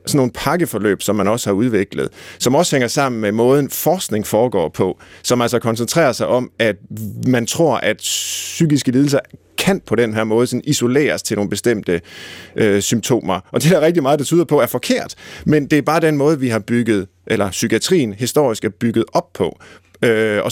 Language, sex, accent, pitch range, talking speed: Danish, male, native, 105-135 Hz, 190 wpm